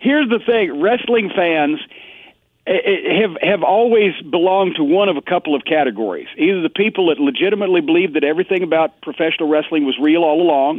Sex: male